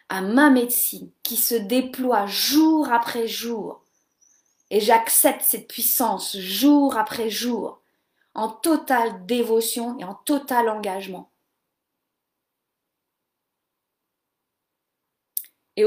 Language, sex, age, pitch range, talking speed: French, female, 30-49, 200-280 Hz, 90 wpm